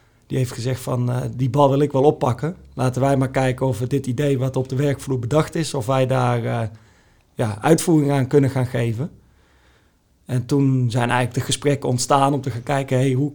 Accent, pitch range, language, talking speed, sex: Dutch, 125-150 Hz, Dutch, 205 wpm, male